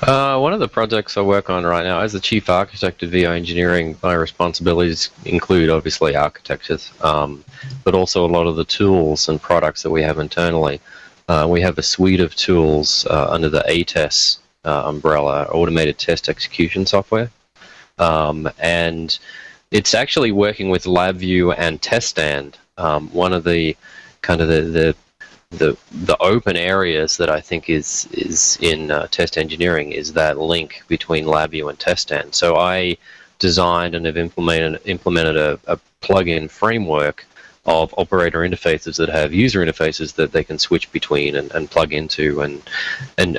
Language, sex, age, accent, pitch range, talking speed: English, male, 30-49, Australian, 80-90 Hz, 165 wpm